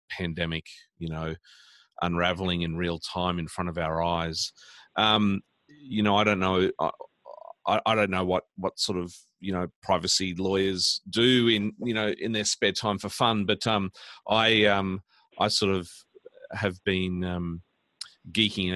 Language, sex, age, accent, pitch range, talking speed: English, male, 40-59, Australian, 85-100 Hz, 165 wpm